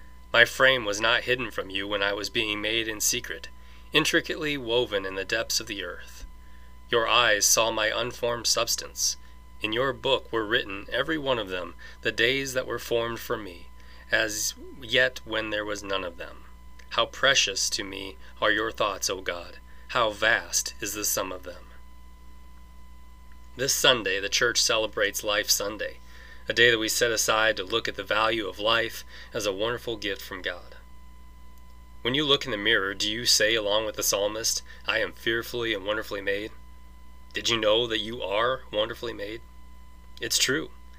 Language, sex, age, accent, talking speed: English, male, 30-49, American, 180 wpm